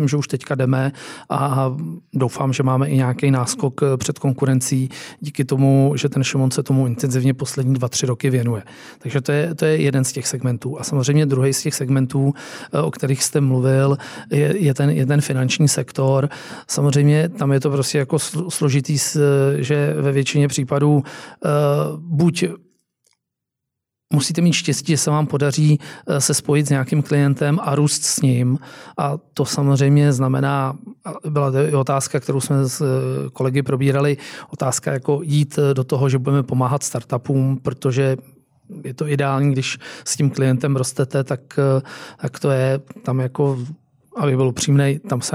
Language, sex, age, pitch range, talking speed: Czech, male, 40-59, 135-145 Hz, 160 wpm